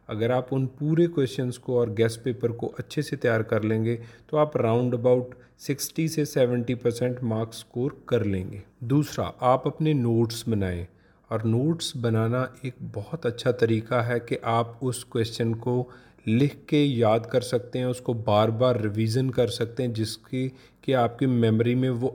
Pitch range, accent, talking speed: 115-145 Hz, native, 175 wpm